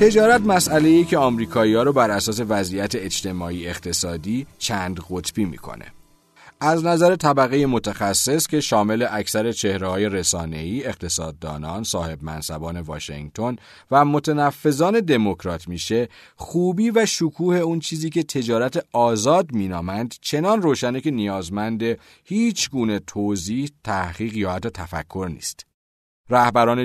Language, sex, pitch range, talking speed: Persian, male, 95-145 Hz, 120 wpm